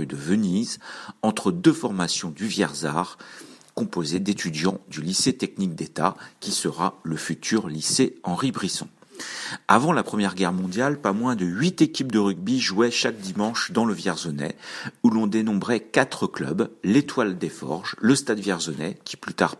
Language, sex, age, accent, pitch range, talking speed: French, male, 50-69, French, 90-125 Hz, 160 wpm